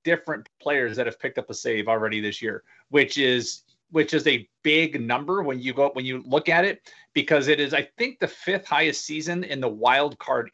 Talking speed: 220 wpm